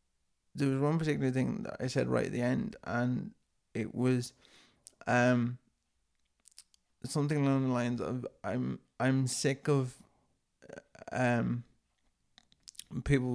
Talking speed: 120 wpm